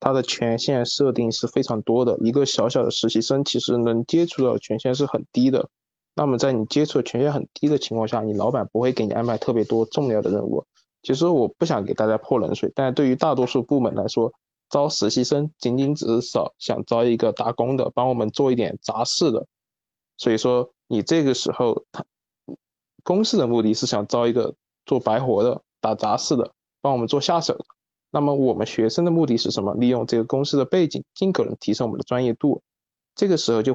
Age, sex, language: 20-39, male, Chinese